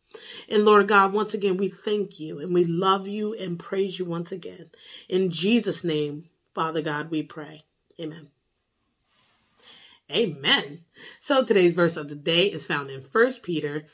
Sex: female